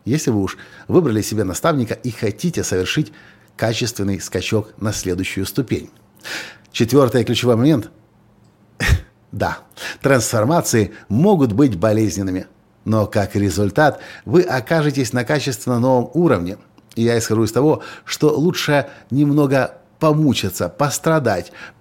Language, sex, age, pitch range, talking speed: Russian, male, 50-69, 110-145 Hz, 115 wpm